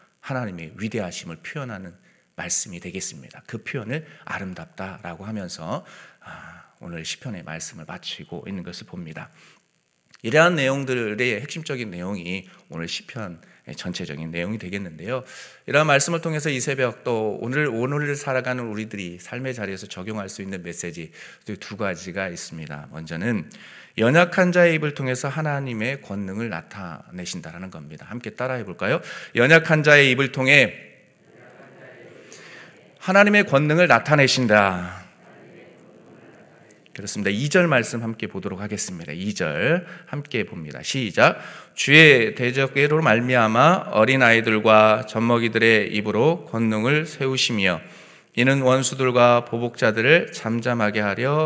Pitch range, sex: 100-135 Hz, male